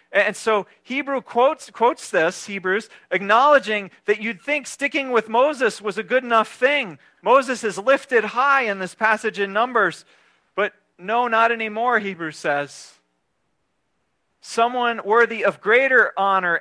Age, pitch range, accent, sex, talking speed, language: 40-59, 170-235 Hz, American, male, 140 wpm, English